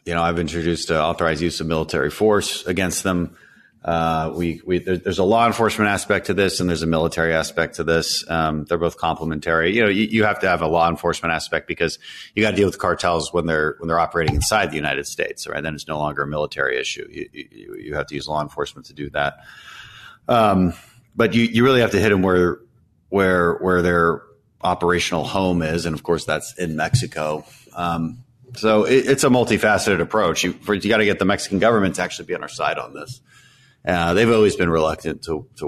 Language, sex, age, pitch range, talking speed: English, male, 30-49, 75-105 Hz, 220 wpm